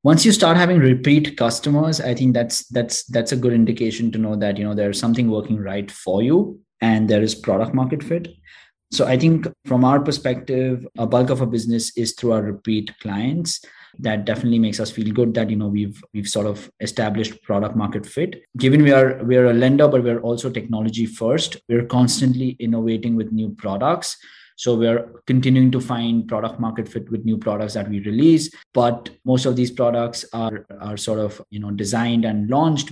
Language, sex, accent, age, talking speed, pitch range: English, male, Indian, 20-39, 200 wpm, 110-130 Hz